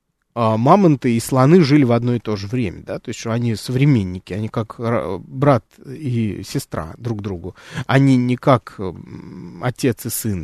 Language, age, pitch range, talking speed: Russian, 20-39, 110-145 Hz, 165 wpm